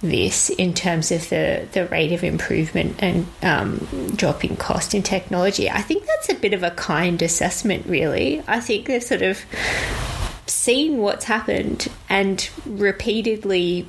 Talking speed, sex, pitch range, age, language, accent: 150 wpm, female, 170-200 Hz, 20-39, English, Australian